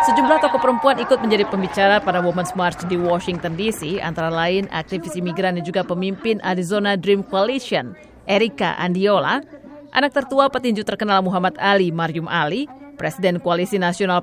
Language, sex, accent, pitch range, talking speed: Indonesian, female, native, 175-225 Hz, 150 wpm